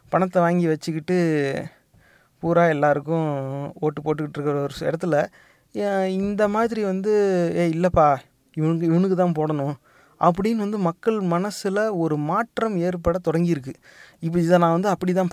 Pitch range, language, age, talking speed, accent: 160-200 Hz, Tamil, 30-49, 125 wpm, native